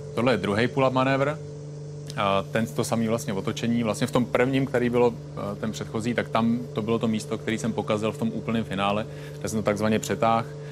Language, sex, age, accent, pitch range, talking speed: Czech, male, 30-49, native, 100-115 Hz, 205 wpm